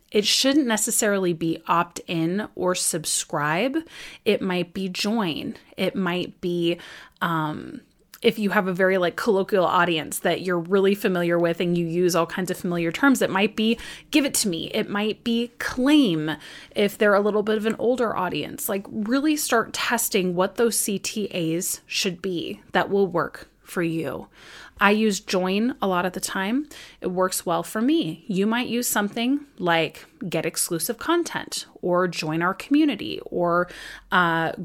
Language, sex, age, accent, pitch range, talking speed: English, female, 30-49, American, 175-235 Hz, 170 wpm